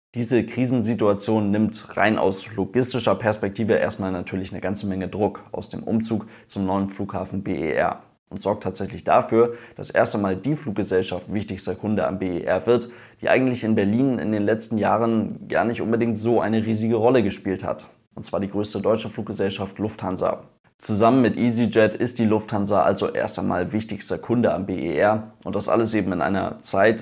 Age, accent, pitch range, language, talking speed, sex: 20-39, German, 100-115 Hz, German, 175 wpm, male